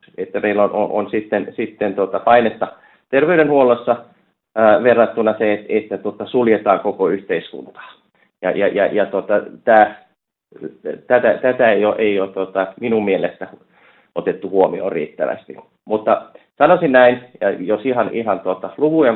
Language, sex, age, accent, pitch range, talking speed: Finnish, male, 30-49, native, 100-120 Hz, 145 wpm